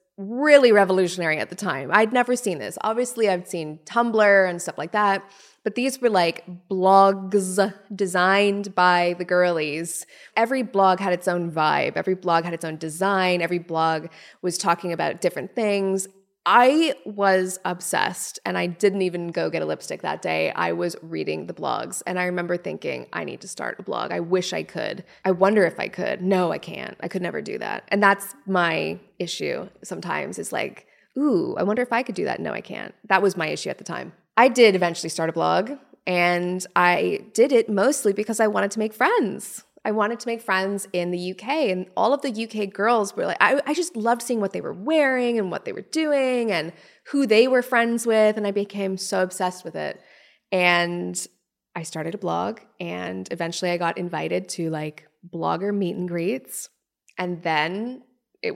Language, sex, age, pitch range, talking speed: English, female, 20-39, 175-220 Hz, 200 wpm